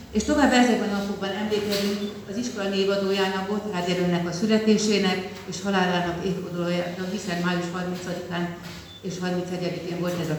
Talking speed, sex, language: 125 wpm, female, Hungarian